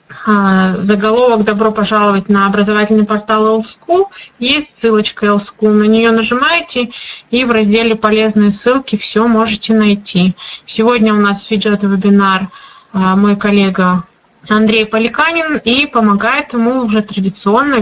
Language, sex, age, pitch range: Russian, female, 20-39, 200-230 Hz